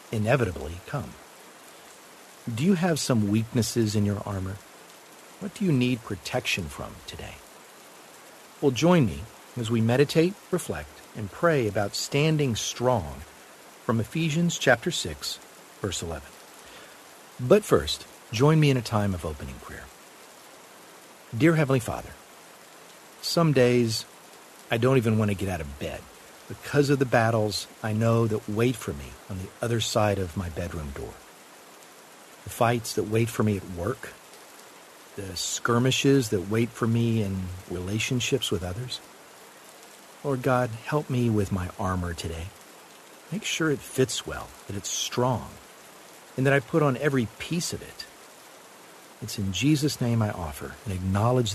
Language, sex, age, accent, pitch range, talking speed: English, male, 50-69, American, 100-135 Hz, 150 wpm